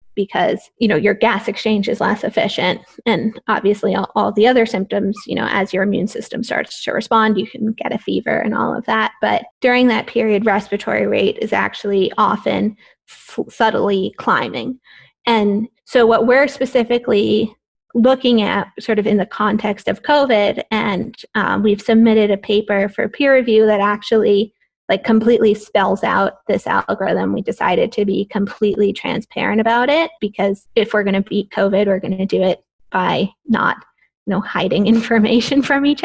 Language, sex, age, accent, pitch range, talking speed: English, female, 20-39, American, 205-240 Hz, 175 wpm